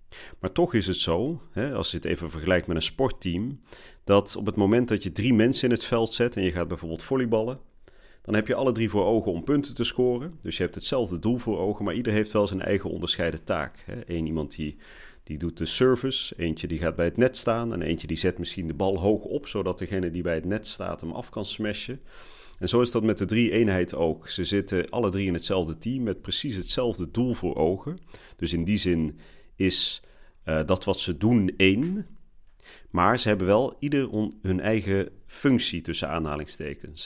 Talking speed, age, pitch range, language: 215 wpm, 40-59, 85-110 Hz, Dutch